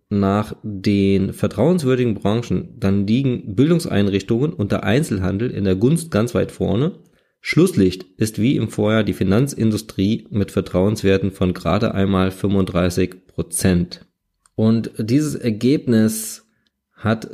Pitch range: 95-115 Hz